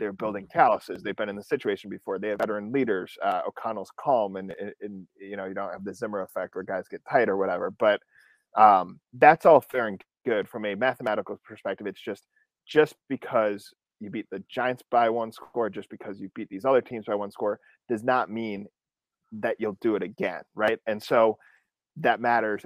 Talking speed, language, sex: 205 wpm, English, male